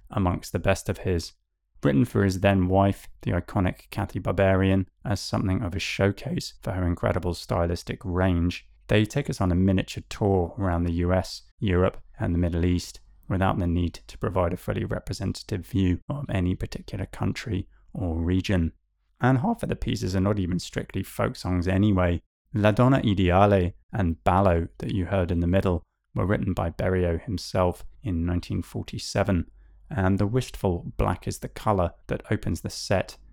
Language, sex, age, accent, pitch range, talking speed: English, male, 20-39, British, 85-100 Hz, 170 wpm